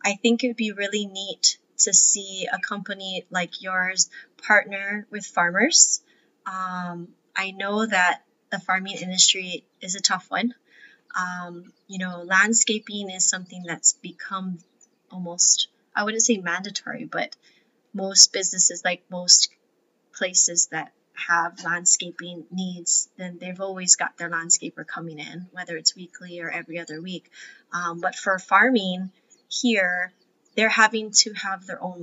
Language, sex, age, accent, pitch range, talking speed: English, female, 20-39, American, 175-220 Hz, 140 wpm